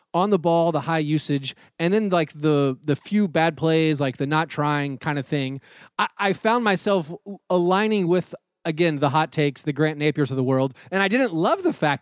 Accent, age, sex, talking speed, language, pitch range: American, 30-49, male, 215 wpm, English, 140-190 Hz